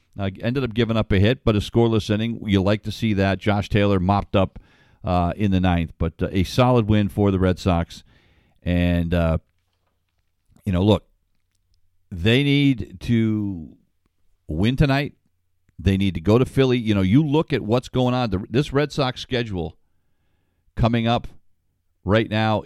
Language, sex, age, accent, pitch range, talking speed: English, male, 50-69, American, 90-120 Hz, 170 wpm